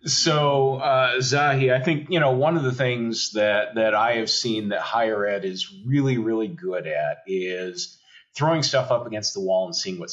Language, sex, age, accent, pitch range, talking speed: English, male, 40-59, American, 110-145 Hz, 200 wpm